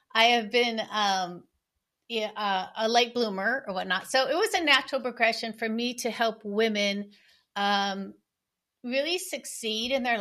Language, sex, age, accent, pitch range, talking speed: English, female, 40-59, American, 195-245 Hz, 155 wpm